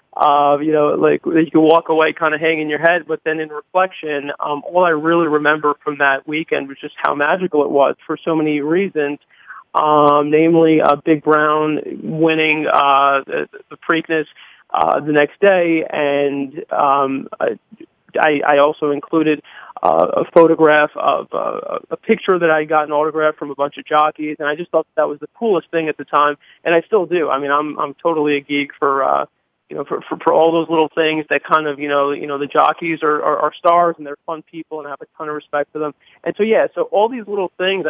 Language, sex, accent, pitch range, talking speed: English, male, American, 145-165 Hz, 220 wpm